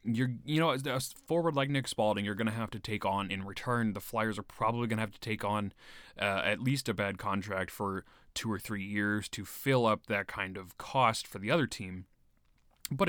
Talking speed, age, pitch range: 230 wpm, 20-39, 105-160 Hz